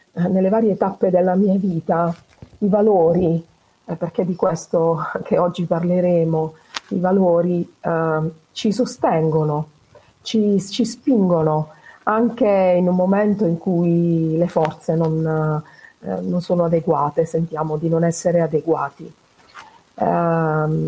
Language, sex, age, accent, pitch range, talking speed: Italian, female, 40-59, native, 160-190 Hz, 120 wpm